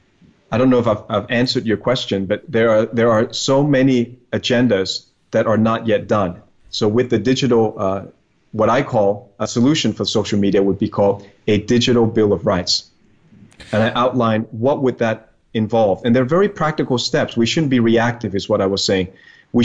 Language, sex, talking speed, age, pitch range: English, male, 200 wpm, 30-49, 105-120 Hz